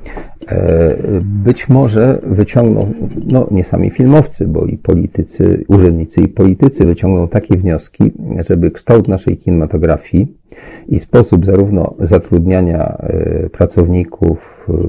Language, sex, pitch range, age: Polish, male, 85-105 Hz, 40-59